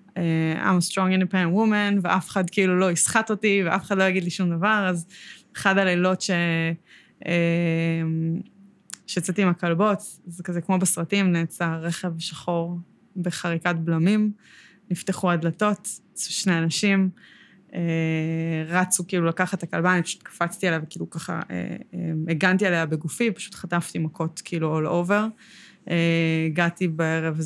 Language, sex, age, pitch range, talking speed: Hebrew, female, 20-39, 165-195 Hz, 130 wpm